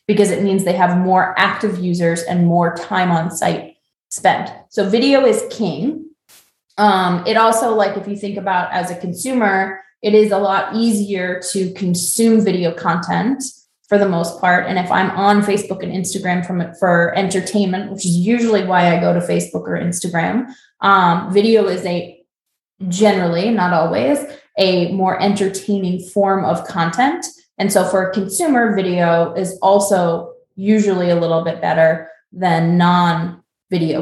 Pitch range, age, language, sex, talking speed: 175-205 Hz, 20-39, English, female, 155 wpm